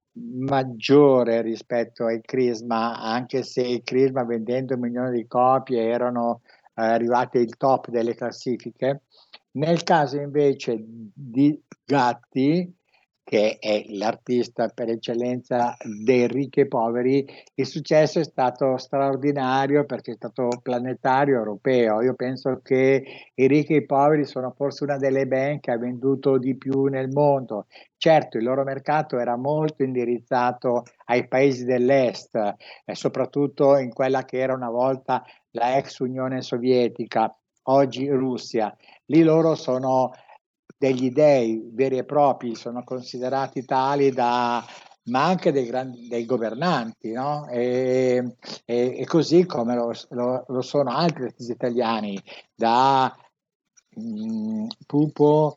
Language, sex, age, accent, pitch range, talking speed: Italian, male, 60-79, native, 120-140 Hz, 125 wpm